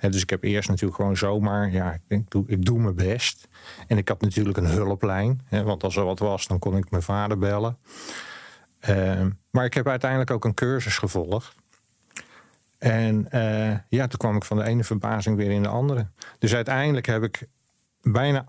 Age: 50-69